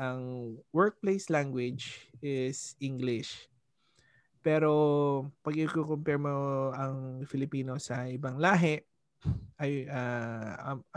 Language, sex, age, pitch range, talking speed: Filipino, male, 20-39, 130-155 Hz, 90 wpm